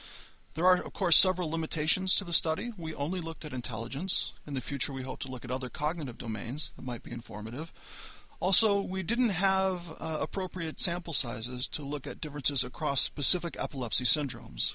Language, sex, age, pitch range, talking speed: English, male, 40-59, 125-165 Hz, 185 wpm